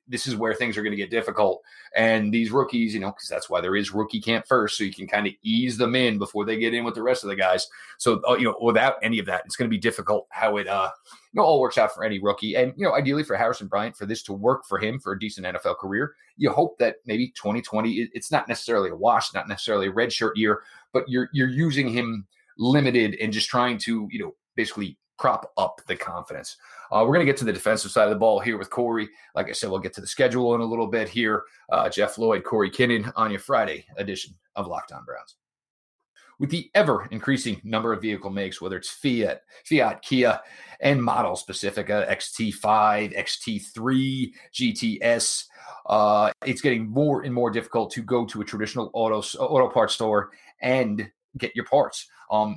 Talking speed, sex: 220 wpm, male